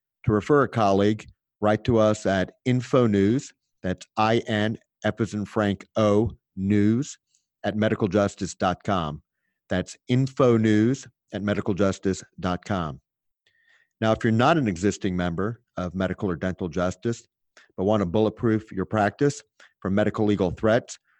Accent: American